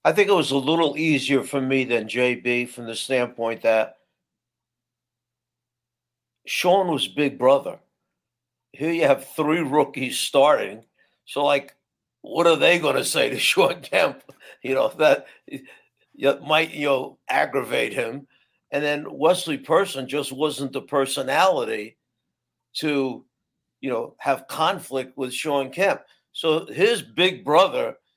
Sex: male